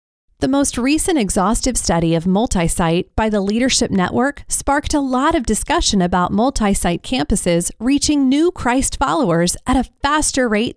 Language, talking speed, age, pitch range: English, 150 wpm, 30-49, 185-265 Hz